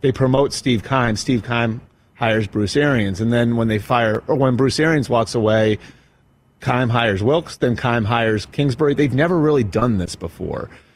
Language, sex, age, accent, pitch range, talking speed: English, male, 30-49, American, 110-135 Hz, 180 wpm